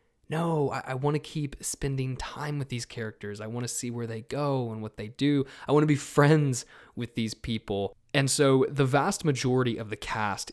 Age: 20-39